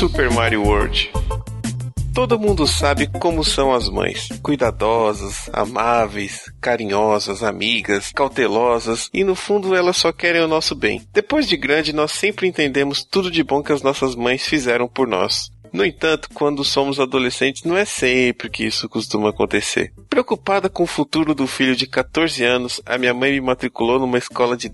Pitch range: 115-155 Hz